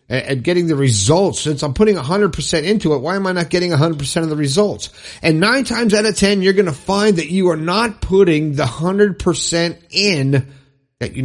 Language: English